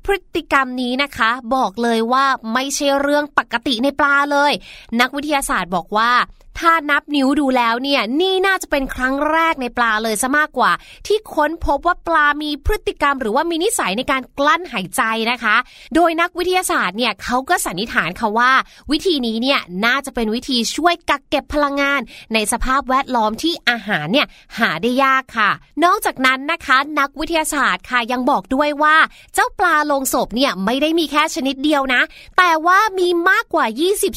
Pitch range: 245-325 Hz